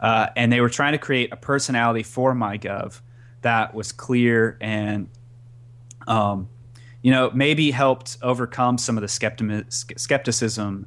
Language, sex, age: English, male, 30-49